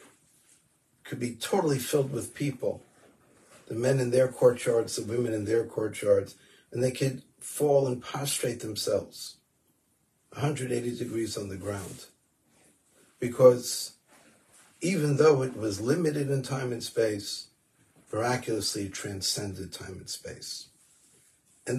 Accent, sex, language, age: American, male, English, 50-69